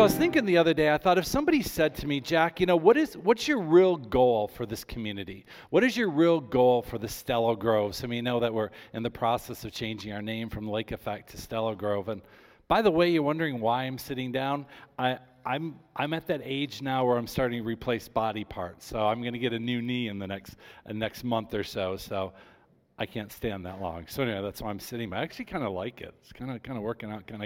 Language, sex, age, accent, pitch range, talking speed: English, male, 40-59, American, 110-150 Hz, 255 wpm